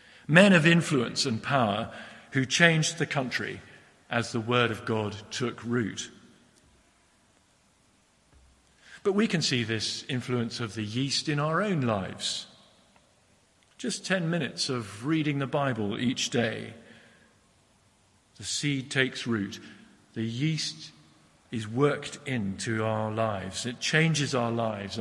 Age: 50-69